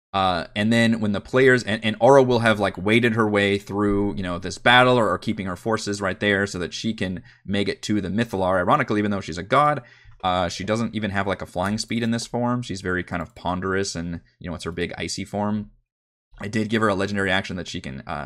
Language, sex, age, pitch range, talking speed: English, male, 20-39, 90-110 Hz, 255 wpm